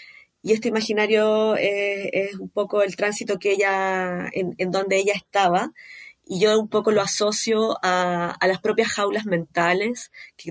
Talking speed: 165 wpm